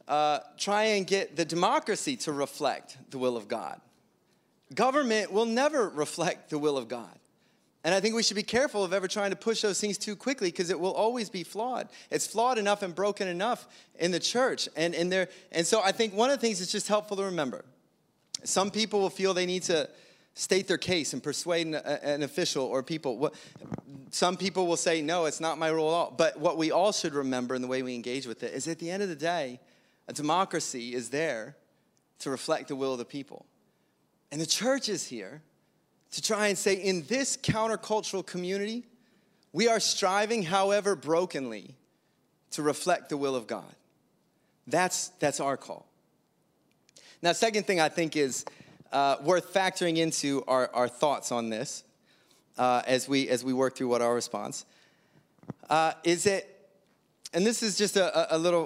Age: 30-49